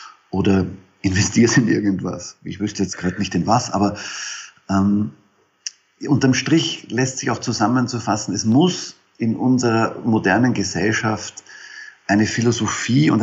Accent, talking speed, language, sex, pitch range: German, 125 wpm, German, male, 95-120 Hz